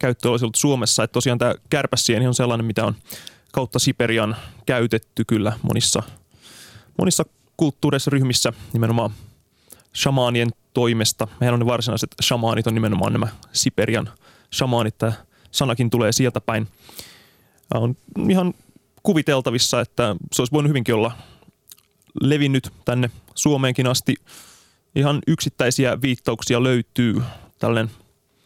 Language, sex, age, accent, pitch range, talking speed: Finnish, male, 20-39, native, 115-135 Hz, 120 wpm